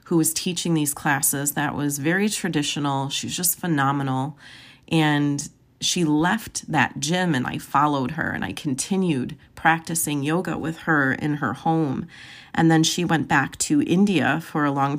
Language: English